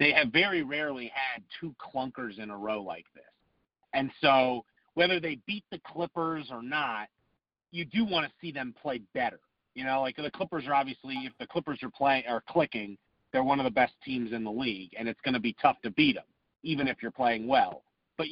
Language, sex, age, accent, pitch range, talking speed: English, male, 40-59, American, 115-170 Hz, 220 wpm